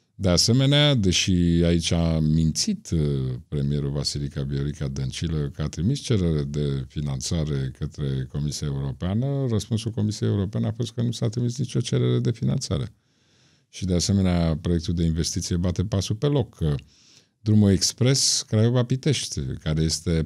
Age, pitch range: 50-69, 80-115 Hz